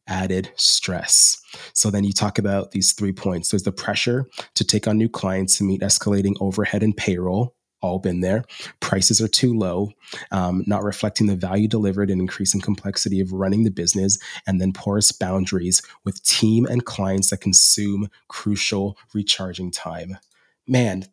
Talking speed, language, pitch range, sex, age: 165 wpm, English, 95-110 Hz, male, 20-39